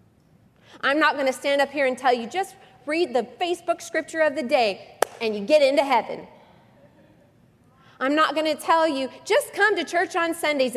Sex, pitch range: female, 195-265 Hz